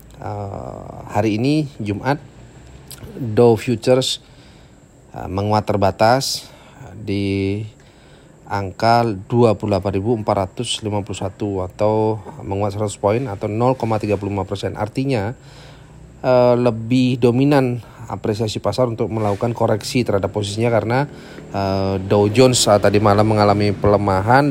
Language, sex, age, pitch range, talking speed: Indonesian, male, 30-49, 100-125 Hz, 95 wpm